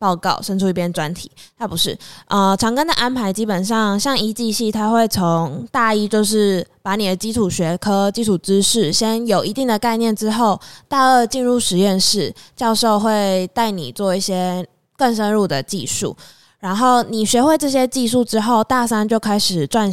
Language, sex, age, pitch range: Chinese, female, 20-39, 185-230 Hz